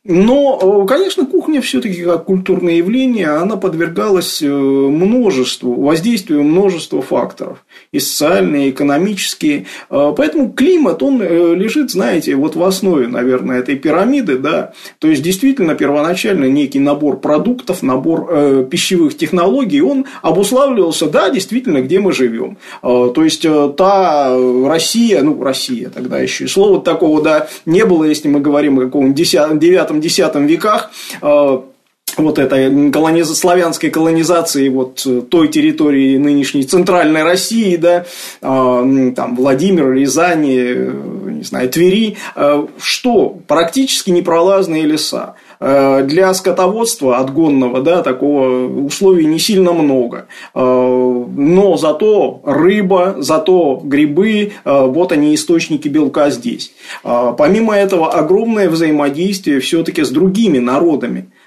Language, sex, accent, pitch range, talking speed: Russian, male, native, 140-200 Hz, 115 wpm